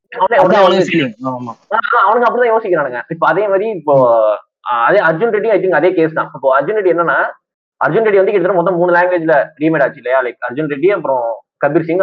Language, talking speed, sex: Tamil, 170 wpm, male